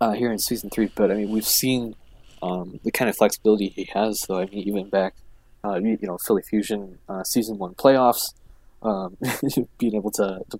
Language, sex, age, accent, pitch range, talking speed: English, male, 20-39, American, 95-110 Hz, 210 wpm